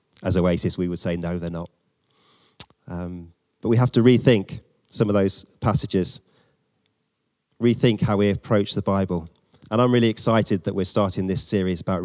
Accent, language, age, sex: British, English, 30-49, male